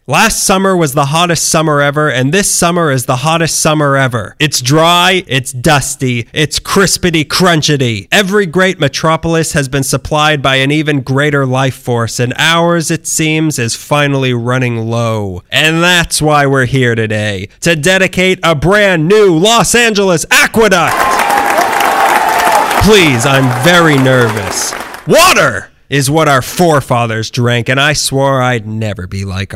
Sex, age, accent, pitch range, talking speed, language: male, 30-49, American, 125-180 Hz, 145 wpm, English